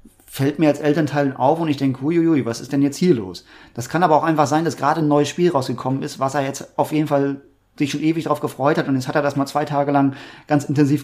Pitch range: 125-150 Hz